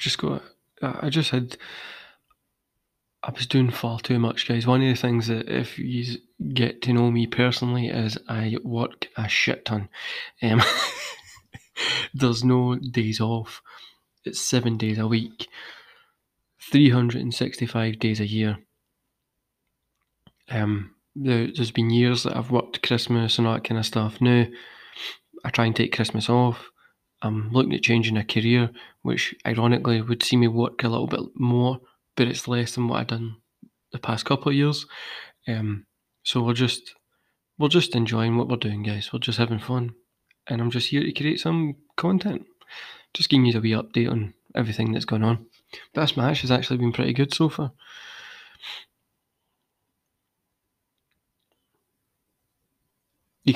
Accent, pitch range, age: British, 115-125 Hz, 20-39